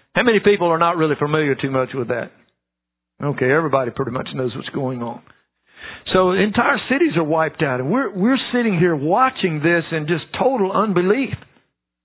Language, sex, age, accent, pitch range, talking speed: English, male, 60-79, American, 145-190 Hz, 180 wpm